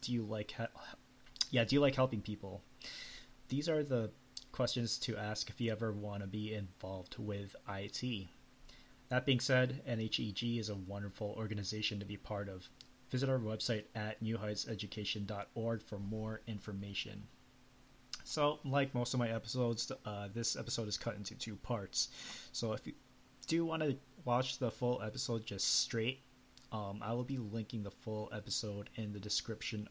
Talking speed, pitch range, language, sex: 165 wpm, 105-125 Hz, English, male